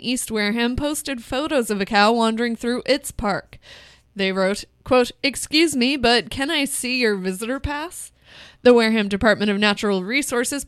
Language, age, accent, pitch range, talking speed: English, 20-39, American, 210-260 Hz, 165 wpm